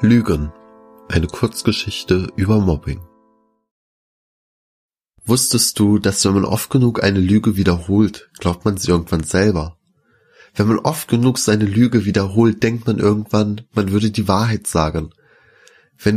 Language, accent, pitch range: German, German, 90-115 Hz